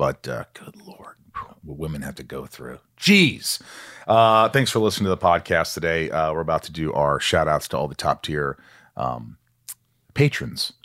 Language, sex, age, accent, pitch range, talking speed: English, male, 40-59, American, 90-120 Hz, 190 wpm